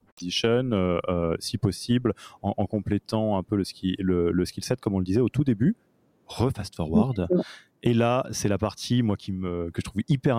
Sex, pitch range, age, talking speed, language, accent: male, 100-130 Hz, 20-39, 210 wpm, French, French